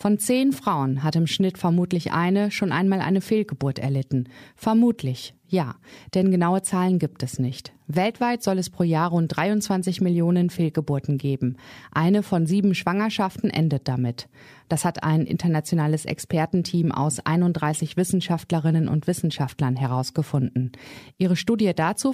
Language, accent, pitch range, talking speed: German, German, 155-190 Hz, 140 wpm